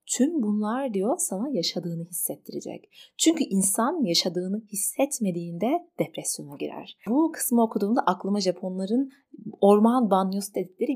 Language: Turkish